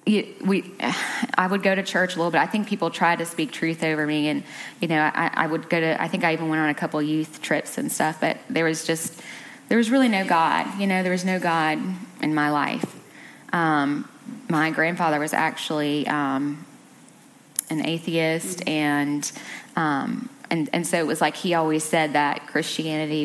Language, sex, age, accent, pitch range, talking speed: English, female, 20-39, American, 160-190 Hz, 200 wpm